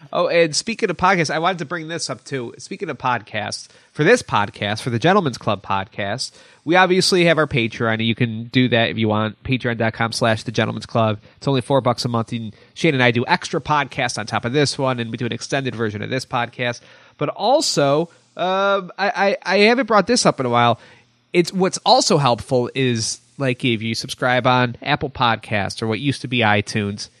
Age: 30-49